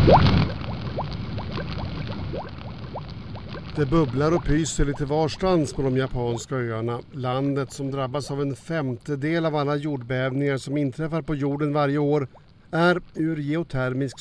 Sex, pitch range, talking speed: male, 125-150 Hz, 120 wpm